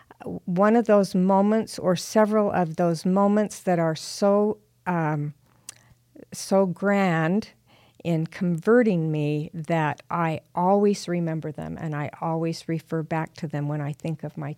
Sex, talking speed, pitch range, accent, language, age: female, 145 wpm, 155-200 Hz, American, English, 50-69